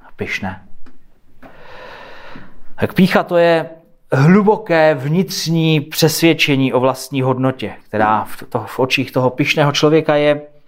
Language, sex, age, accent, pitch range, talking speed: Czech, male, 30-49, native, 130-190 Hz, 105 wpm